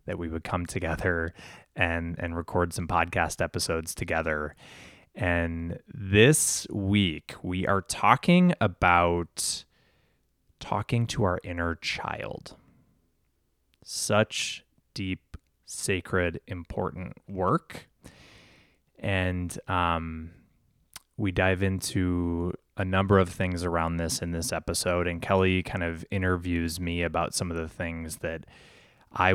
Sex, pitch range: male, 85-95 Hz